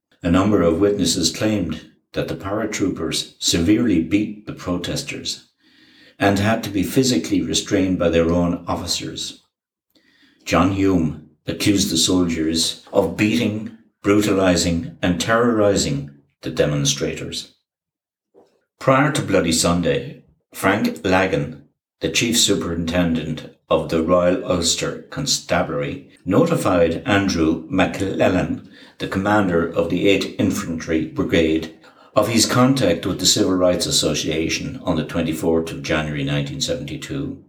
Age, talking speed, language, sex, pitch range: 60-79, 115 wpm, English, male, 80-100 Hz